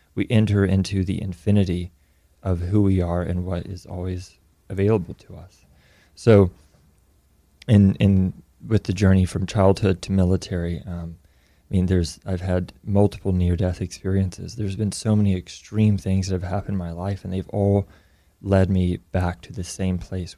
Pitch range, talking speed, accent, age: 90-105 Hz, 170 wpm, American, 30-49